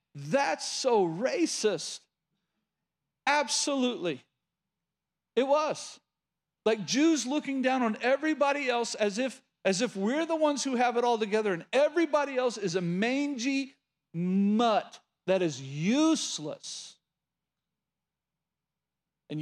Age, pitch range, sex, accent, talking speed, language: 40-59, 185-260 Hz, male, American, 110 wpm, English